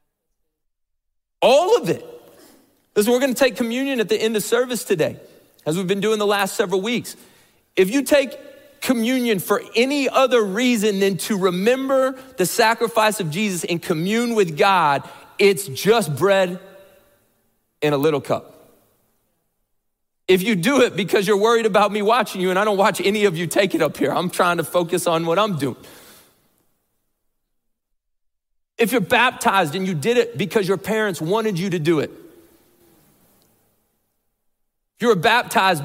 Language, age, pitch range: English, 30-49, 180-235 Hz